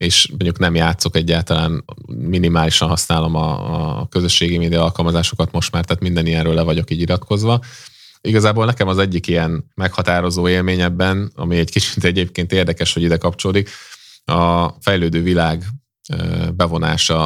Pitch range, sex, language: 85-95 Hz, male, Hungarian